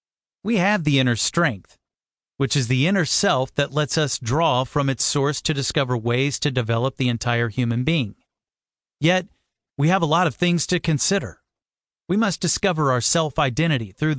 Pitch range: 130-170 Hz